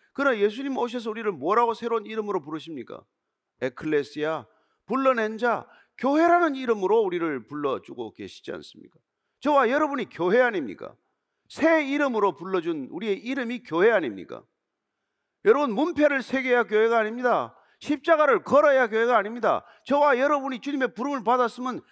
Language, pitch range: Korean, 200-285 Hz